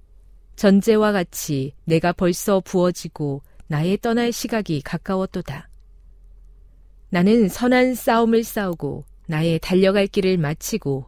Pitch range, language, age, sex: 135-200 Hz, Korean, 40-59, female